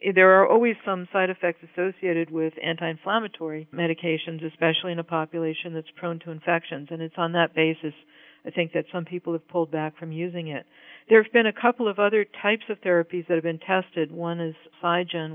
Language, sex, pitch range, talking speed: English, female, 160-180 Hz, 200 wpm